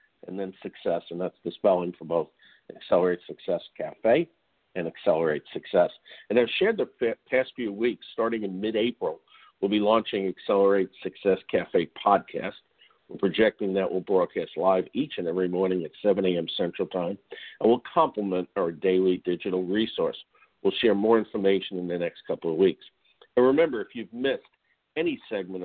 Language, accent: English, American